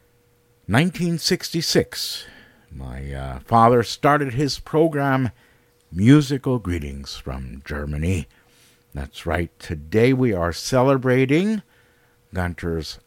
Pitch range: 85-135 Hz